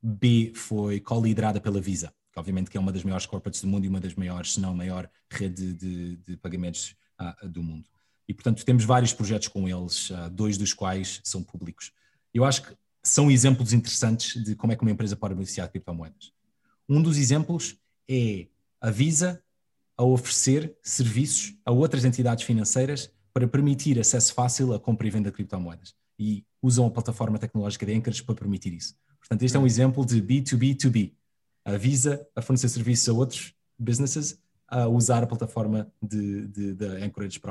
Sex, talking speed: male, 180 wpm